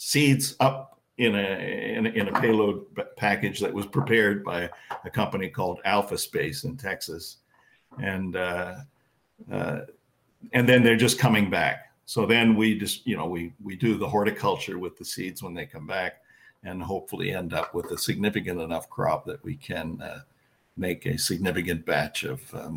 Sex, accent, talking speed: male, American, 175 wpm